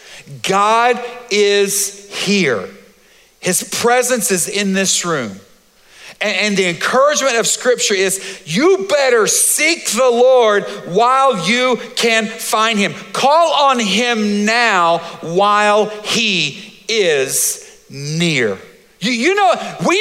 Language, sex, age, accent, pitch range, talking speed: English, male, 50-69, American, 165-225 Hz, 110 wpm